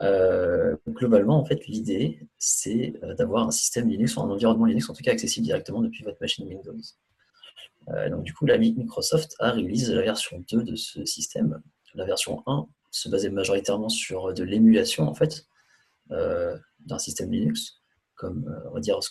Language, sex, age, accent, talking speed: French, male, 30-49, French, 180 wpm